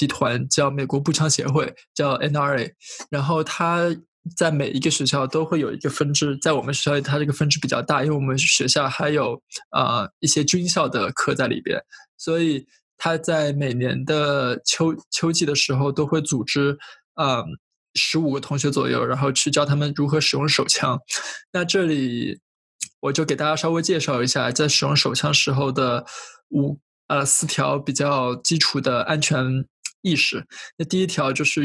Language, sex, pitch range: Chinese, male, 140-155 Hz